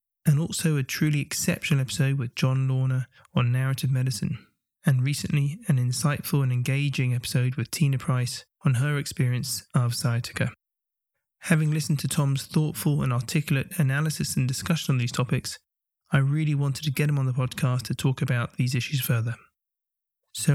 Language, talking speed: English, 165 wpm